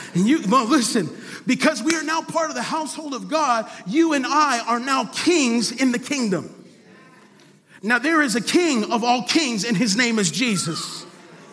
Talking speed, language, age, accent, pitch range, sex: 175 wpm, English, 40-59, American, 210-285 Hz, male